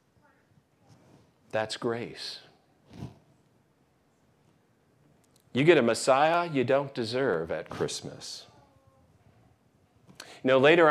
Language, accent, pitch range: English, American, 105-130 Hz